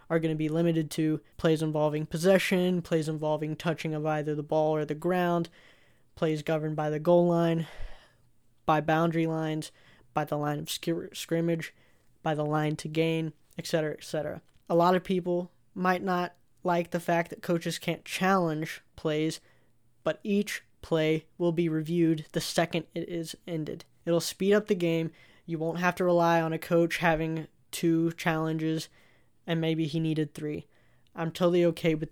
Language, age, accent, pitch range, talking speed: English, 10-29, American, 155-175 Hz, 170 wpm